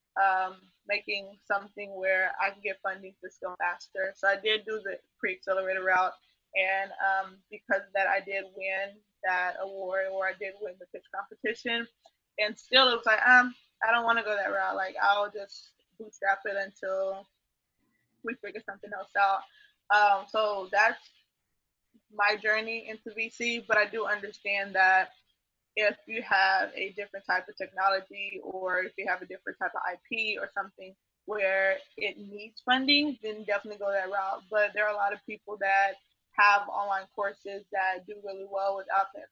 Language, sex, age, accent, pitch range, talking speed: English, female, 20-39, American, 195-215 Hz, 180 wpm